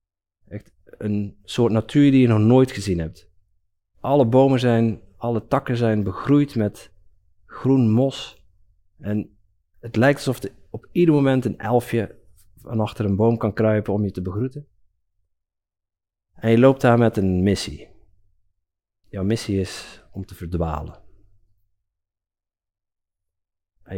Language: Dutch